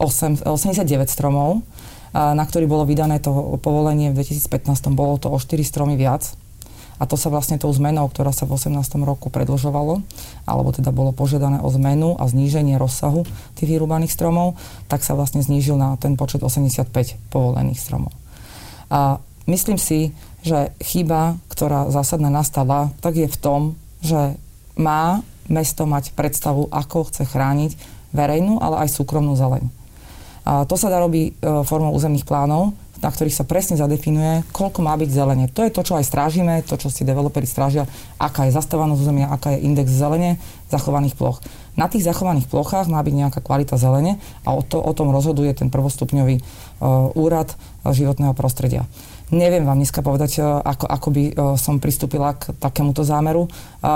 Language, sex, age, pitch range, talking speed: Slovak, female, 30-49, 135-155 Hz, 160 wpm